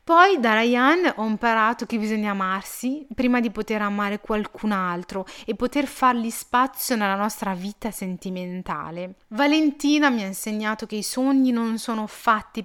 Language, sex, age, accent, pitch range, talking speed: Italian, female, 30-49, native, 200-255 Hz, 150 wpm